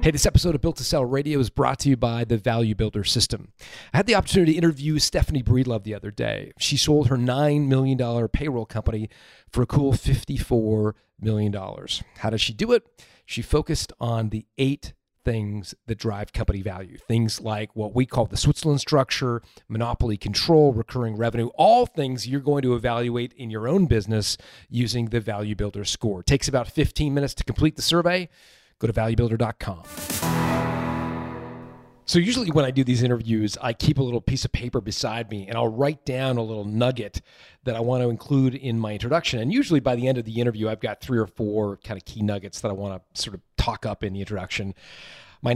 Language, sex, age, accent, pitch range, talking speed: English, male, 40-59, American, 110-135 Hz, 205 wpm